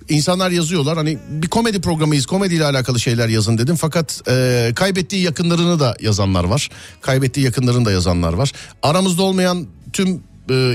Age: 40-59